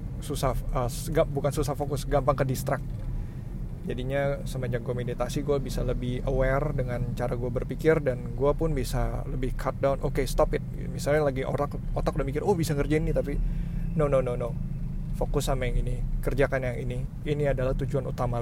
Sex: male